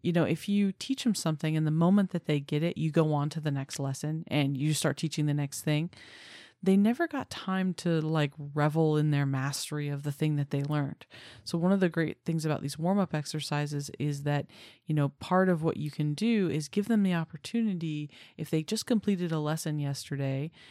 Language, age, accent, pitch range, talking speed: English, 30-49, American, 145-175 Hz, 220 wpm